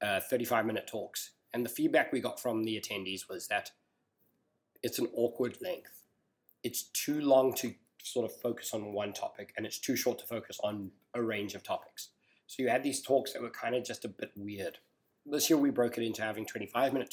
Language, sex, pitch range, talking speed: English, male, 110-125 Hz, 205 wpm